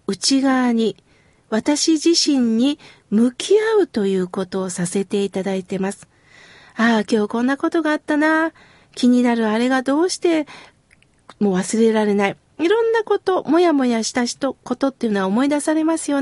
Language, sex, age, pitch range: Japanese, female, 40-59, 230-325 Hz